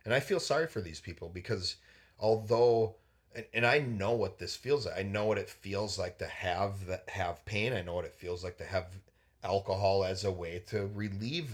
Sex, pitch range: male, 90-105 Hz